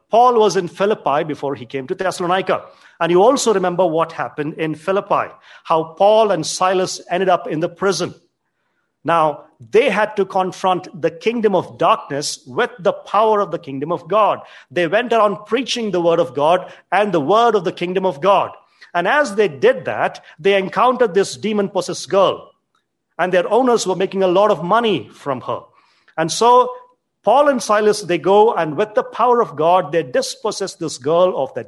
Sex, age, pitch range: male, 50-69, 165-215 Hz